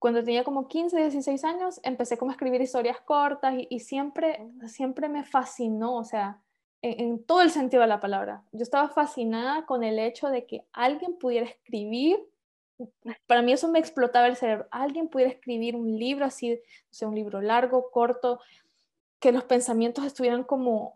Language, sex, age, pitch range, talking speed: Spanish, female, 10-29, 225-265 Hz, 185 wpm